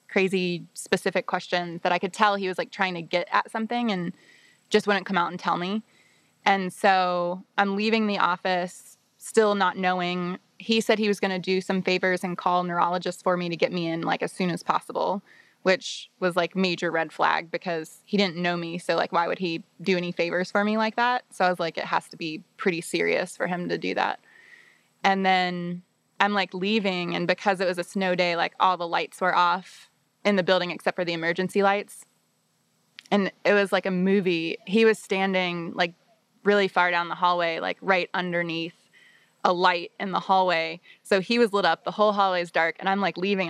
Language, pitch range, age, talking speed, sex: English, 175-200 Hz, 20-39, 215 wpm, female